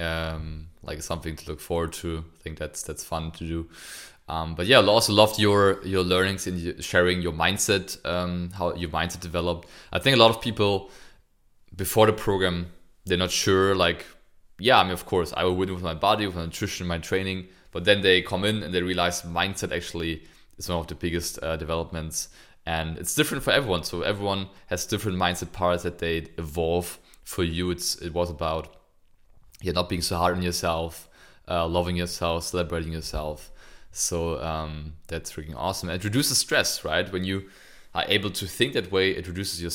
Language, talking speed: English, 195 wpm